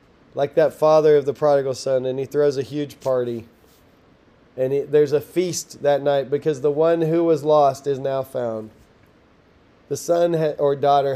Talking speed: 170 wpm